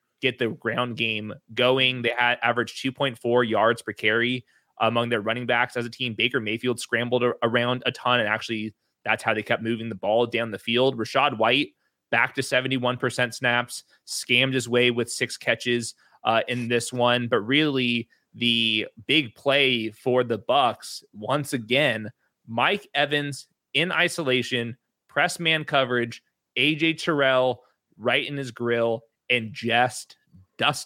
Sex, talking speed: male, 155 wpm